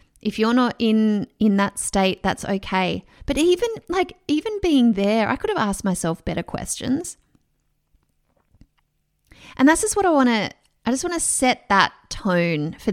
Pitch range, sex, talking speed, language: 190-255 Hz, female, 170 wpm, English